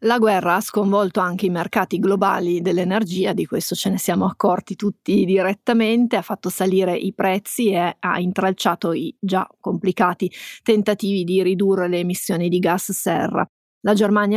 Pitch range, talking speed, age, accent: 185-215 Hz, 160 wpm, 30-49, native